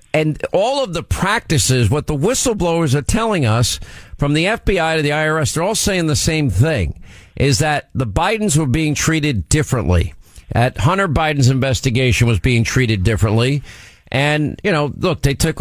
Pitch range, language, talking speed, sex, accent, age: 125-160 Hz, English, 175 wpm, male, American, 50-69